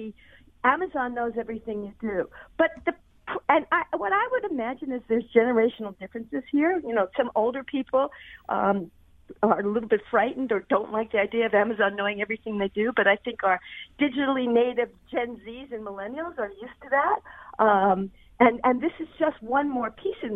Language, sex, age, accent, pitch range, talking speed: English, female, 50-69, American, 210-275 Hz, 190 wpm